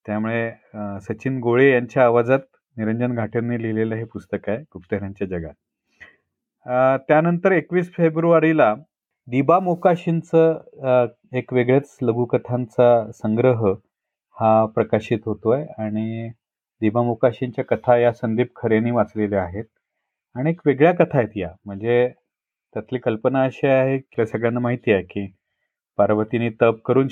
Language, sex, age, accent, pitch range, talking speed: Marathi, male, 40-59, native, 110-140 Hz, 115 wpm